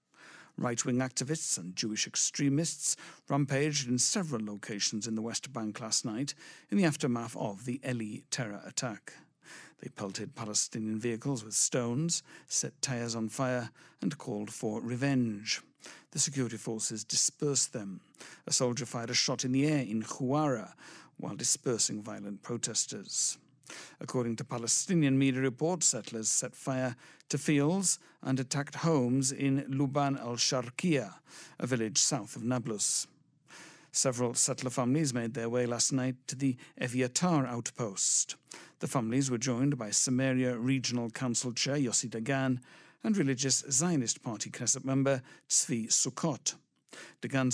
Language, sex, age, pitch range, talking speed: English, male, 60-79, 120-145 Hz, 140 wpm